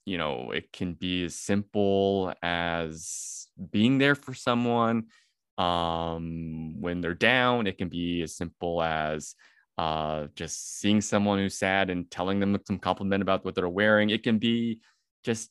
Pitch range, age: 90-105 Hz, 20-39